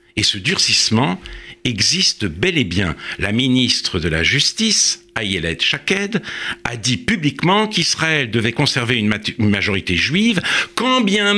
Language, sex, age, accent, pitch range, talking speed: French, male, 60-79, French, 100-155 Hz, 130 wpm